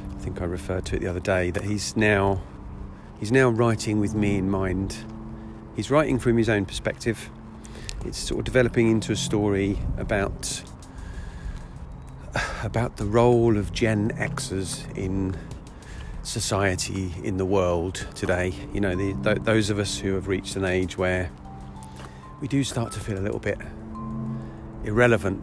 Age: 40-59